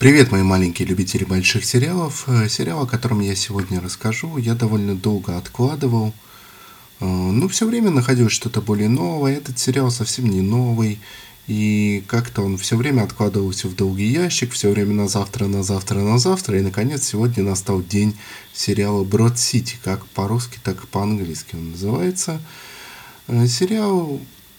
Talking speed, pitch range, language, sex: 150 wpm, 100-130 Hz, Russian, male